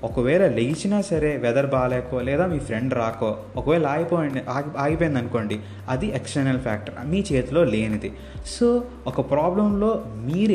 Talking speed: 135 wpm